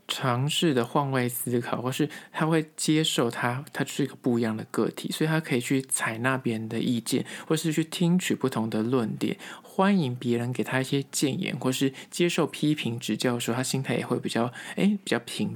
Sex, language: male, Chinese